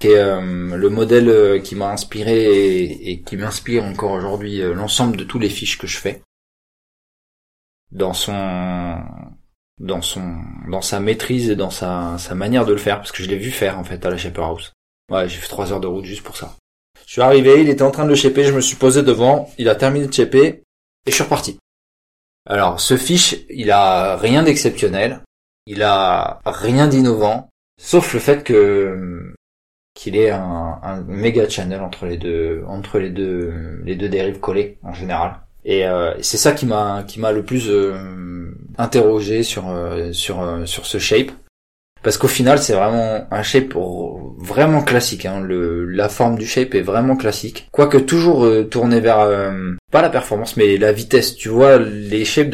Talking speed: 195 wpm